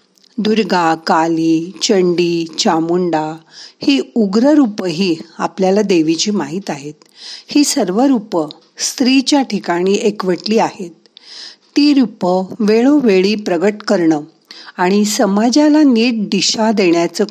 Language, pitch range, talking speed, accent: Marathi, 170-225 Hz, 95 wpm, native